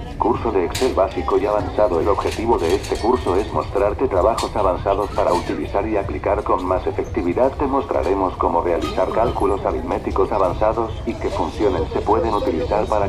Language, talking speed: Spanish, 165 wpm